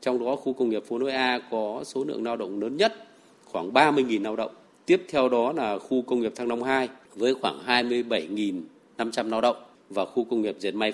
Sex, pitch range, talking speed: male, 110-140 Hz, 220 wpm